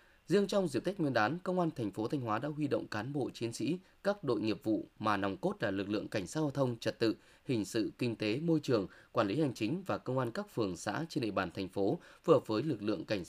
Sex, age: male, 20-39